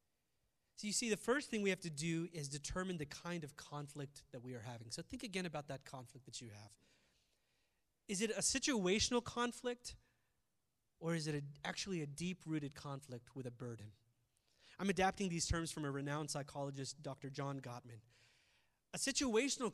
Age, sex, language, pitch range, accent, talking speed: 30-49, male, English, 140-195 Hz, American, 175 wpm